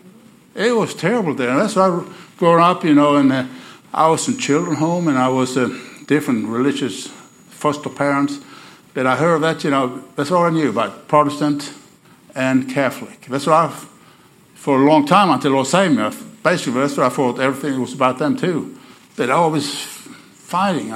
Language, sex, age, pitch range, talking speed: English, male, 60-79, 130-165 Hz, 185 wpm